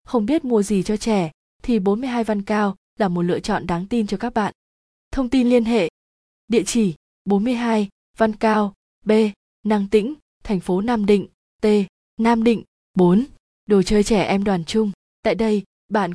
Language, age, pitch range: Vietnamese, 20-39, 195-225 Hz